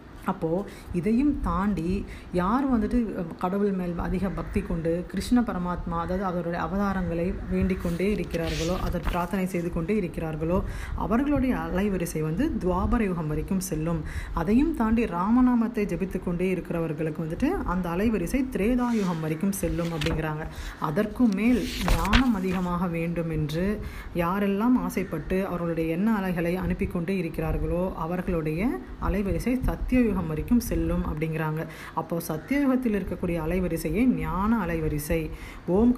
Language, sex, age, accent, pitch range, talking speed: Tamil, female, 30-49, native, 170-220 Hz, 100 wpm